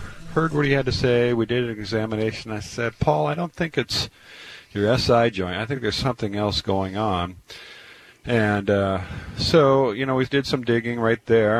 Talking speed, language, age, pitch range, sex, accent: 195 wpm, English, 40-59, 95-120 Hz, male, American